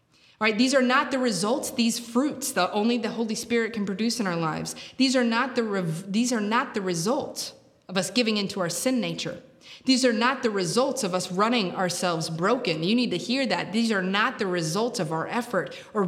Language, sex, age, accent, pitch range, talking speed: English, female, 20-39, American, 185-245 Hz, 225 wpm